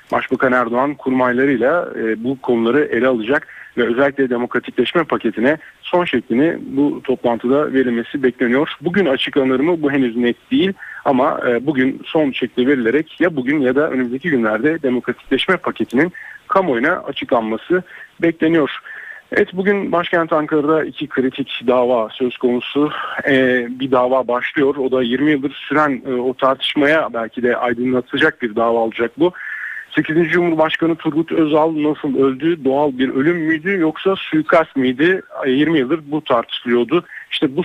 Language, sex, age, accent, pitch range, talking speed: Turkish, male, 40-59, native, 125-160 Hz, 140 wpm